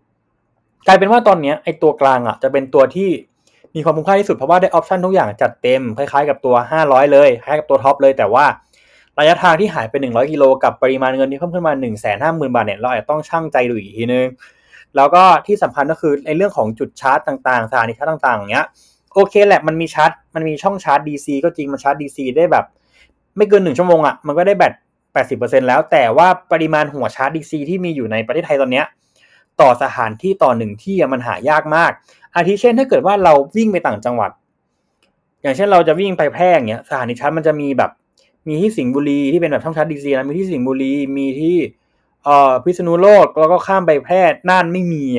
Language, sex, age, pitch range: Thai, male, 20-39, 135-185 Hz